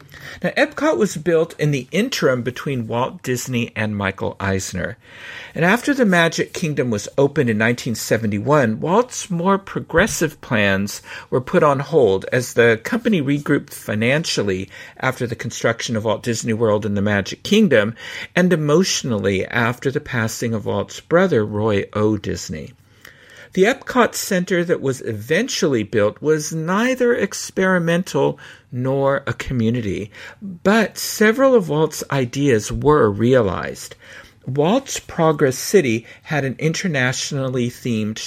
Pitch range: 115-165 Hz